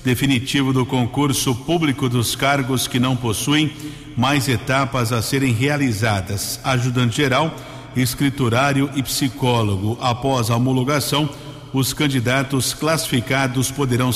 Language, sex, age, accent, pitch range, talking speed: Portuguese, male, 50-69, Brazilian, 125-145 Hz, 110 wpm